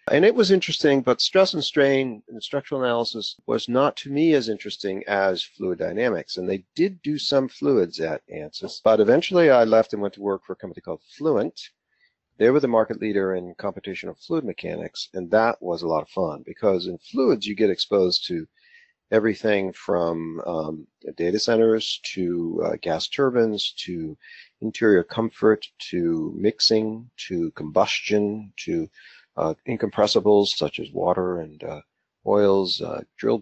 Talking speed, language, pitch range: 165 wpm, English, 95-115 Hz